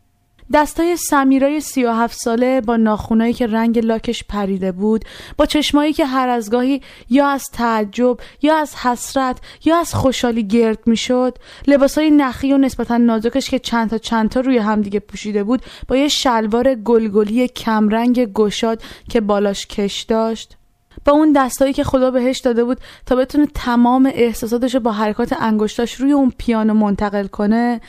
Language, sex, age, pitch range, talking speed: Persian, female, 20-39, 205-260 Hz, 155 wpm